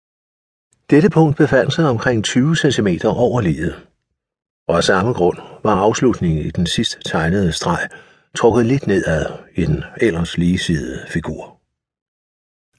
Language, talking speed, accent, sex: Danish, 130 wpm, native, male